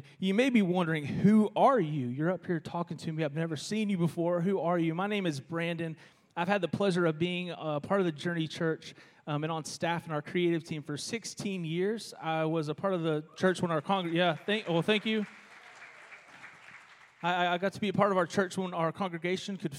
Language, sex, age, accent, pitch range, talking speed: English, male, 30-49, American, 160-200 Hz, 235 wpm